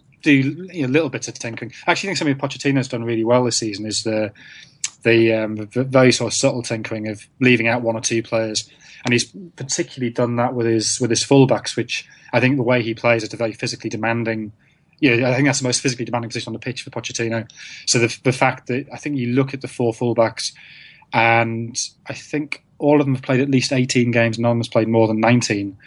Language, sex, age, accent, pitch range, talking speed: English, male, 20-39, British, 115-145 Hz, 240 wpm